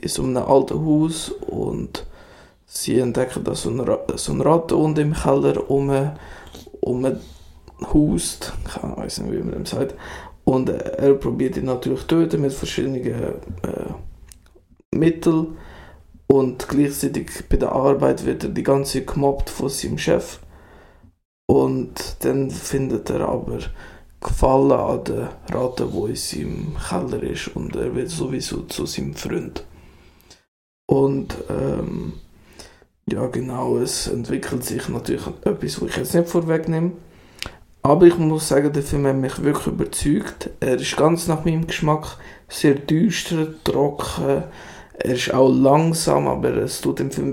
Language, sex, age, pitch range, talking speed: German, male, 20-39, 130-160 Hz, 140 wpm